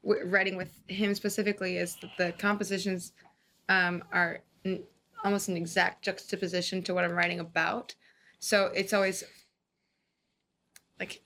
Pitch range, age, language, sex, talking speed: 180-200 Hz, 20-39, English, female, 130 wpm